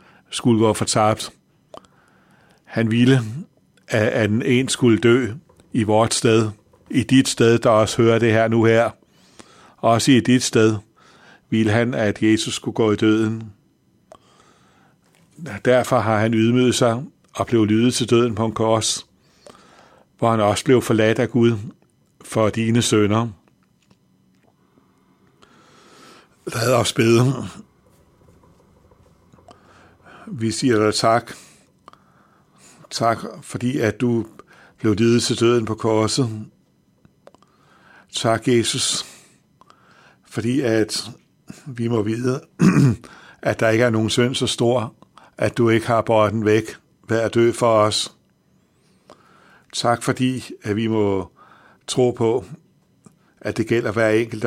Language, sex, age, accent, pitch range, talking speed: Danish, male, 60-79, native, 110-120 Hz, 125 wpm